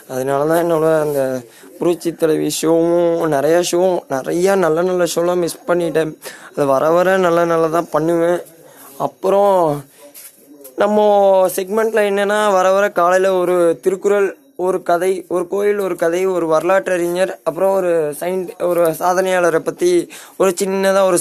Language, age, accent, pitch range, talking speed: Tamil, 20-39, native, 160-190 Hz, 135 wpm